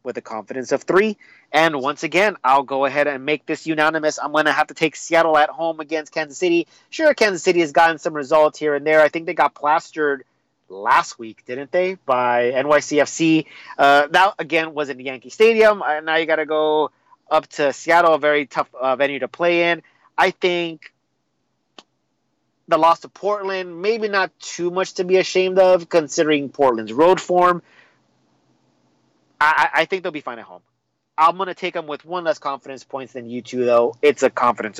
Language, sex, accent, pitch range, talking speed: English, male, American, 145-185 Hz, 200 wpm